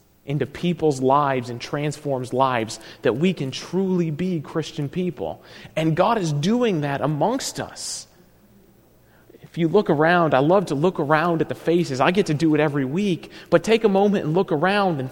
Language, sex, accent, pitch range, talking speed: English, male, American, 155-225 Hz, 185 wpm